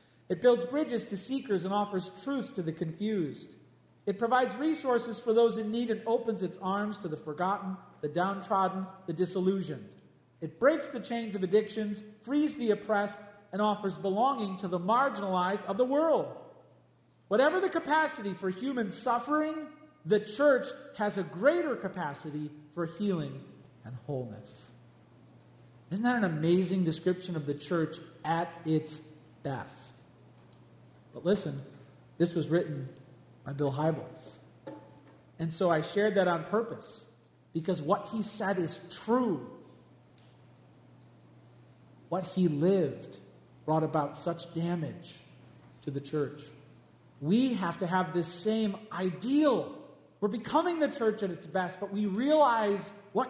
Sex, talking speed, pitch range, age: male, 140 wpm, 160-220 Hz, 40-59